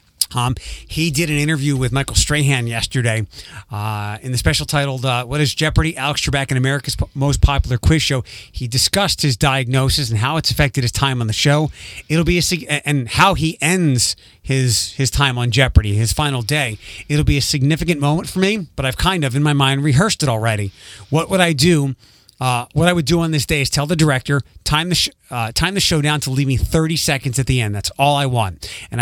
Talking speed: 225 wpm